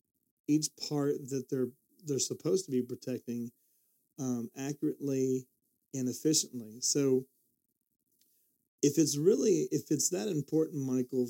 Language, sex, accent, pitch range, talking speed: English, male, American, 125-140 Hz, 115 wpm